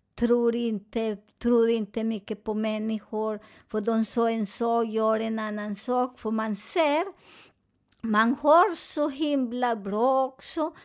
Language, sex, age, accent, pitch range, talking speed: Swedish, male, 50-69, American, 235-280 Hz, 140 wpm